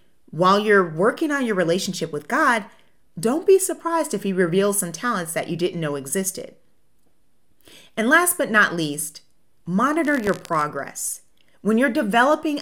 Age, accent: 30-49, American